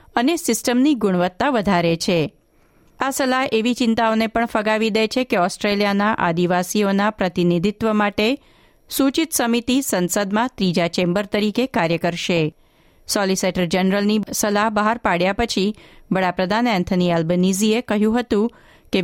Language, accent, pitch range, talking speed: Gujarati, native, 185-235 Hz, 120 wpm